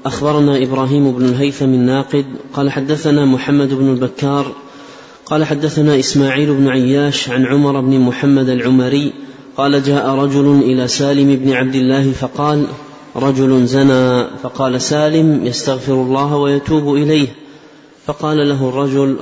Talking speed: 125 wpm